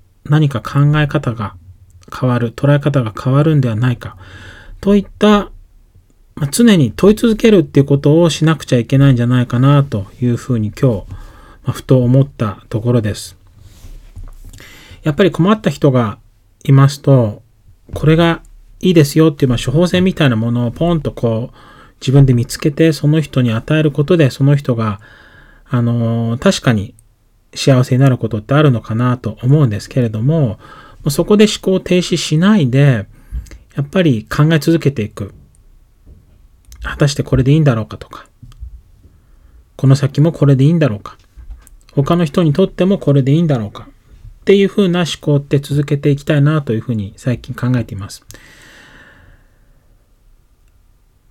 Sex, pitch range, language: male, 105-150 Hz, Japanese